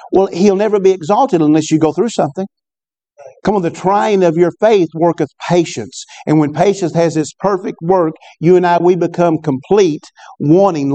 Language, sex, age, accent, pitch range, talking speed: English, male, 50-69, American, 160-195 Hz, 180 wpm